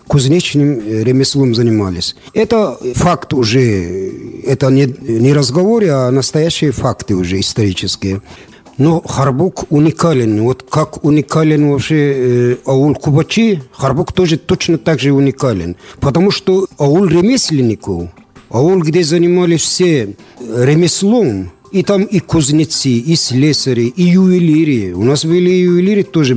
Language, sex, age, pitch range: Russian, male, 50-69, 130-175 Hz